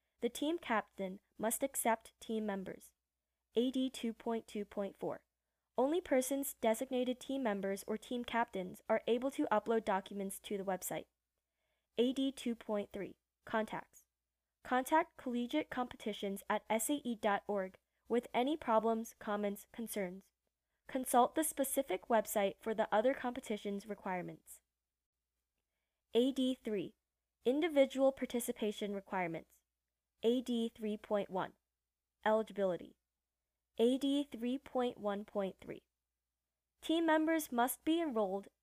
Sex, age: female, 10-29